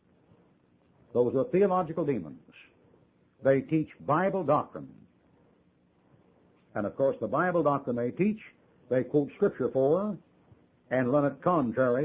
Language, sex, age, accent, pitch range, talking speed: English, male, 60-79, American, 125-170 Hz, 120 wpm